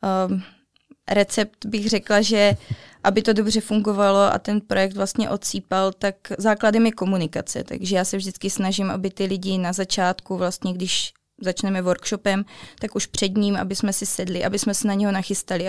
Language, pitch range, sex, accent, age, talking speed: Czech, 185-200 Hz, female, native, 20-39, 175 wpm